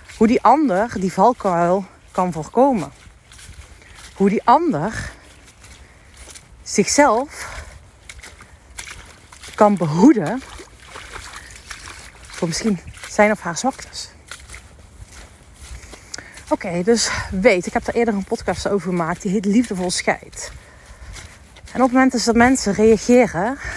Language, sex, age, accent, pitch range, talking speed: Dutch, female, 40-59, Dutch, 170-235 Hz, 105 wpm